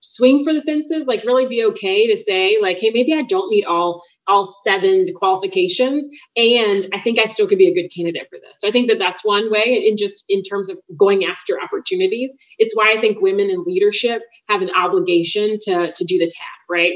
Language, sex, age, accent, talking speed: English, female, 30-49, American, 225 wpm